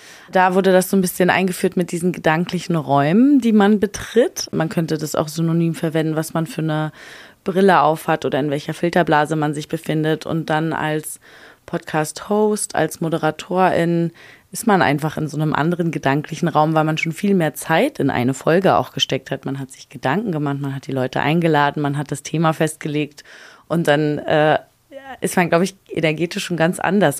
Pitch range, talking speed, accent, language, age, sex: 155-180 Hz, 190 wpm, German, German, 20-39, female